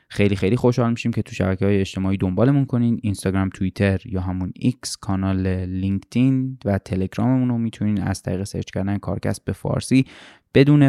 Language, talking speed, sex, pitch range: Persian, 165 wpm, male, 95-110 Hz